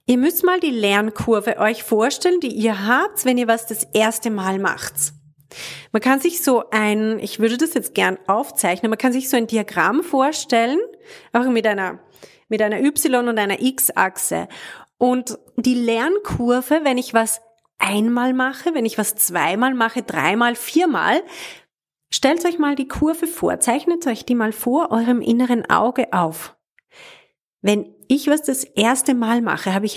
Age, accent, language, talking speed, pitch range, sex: 30-49, German, German, 165 wpm, 215-275 Hz, female